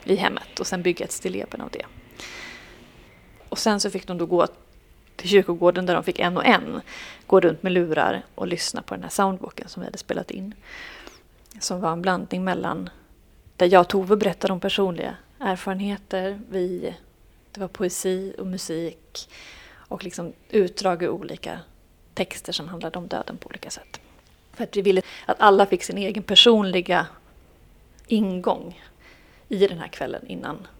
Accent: native